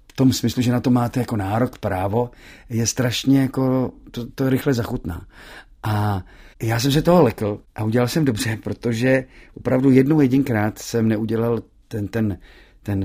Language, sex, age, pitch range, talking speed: Czech, male, 40-59, 105-125 Hz, 165 wpm